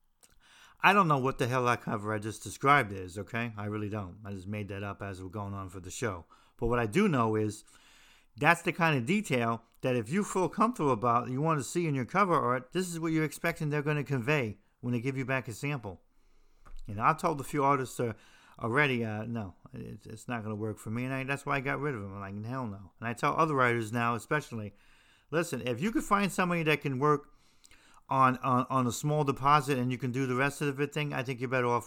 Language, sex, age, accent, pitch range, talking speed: English, male, 50-69, American, 110-150 Hz, 250 wpm